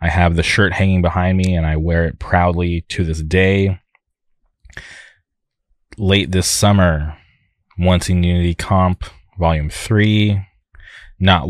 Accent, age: American, 20-39